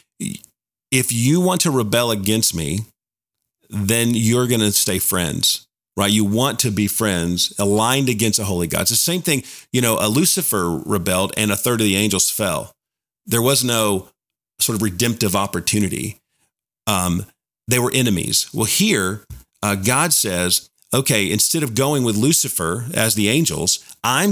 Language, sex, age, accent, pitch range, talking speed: English, male, 40-59, American, 100-135 Hz, 165 wpm